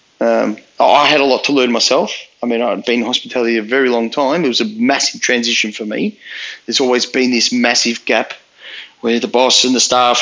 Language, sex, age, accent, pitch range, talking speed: English, male, 30-49, Australian, 115-145 Hz, 215 wpm